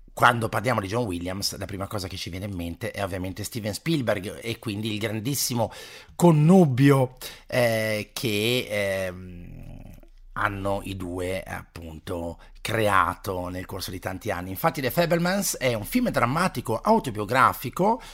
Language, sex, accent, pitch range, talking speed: Italian, male, native, 105-135 Hz, 140 wpm